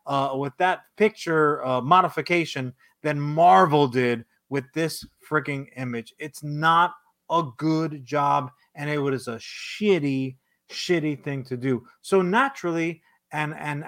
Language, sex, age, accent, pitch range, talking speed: English, male, 30-49, American, 135-170 Hz, 135 wpm